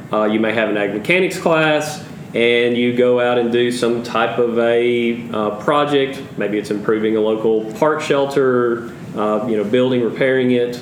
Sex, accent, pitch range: male, American, 115-130 Hz